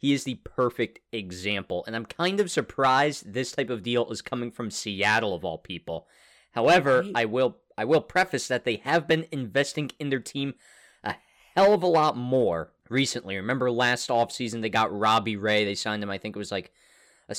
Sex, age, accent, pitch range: male, 20-39, American, 100-140 Hz